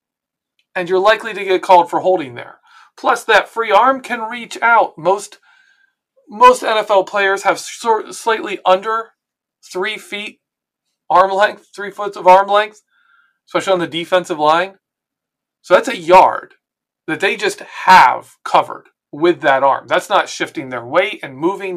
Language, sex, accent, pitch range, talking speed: English, male, American, 185-270 Hz, 155 wpm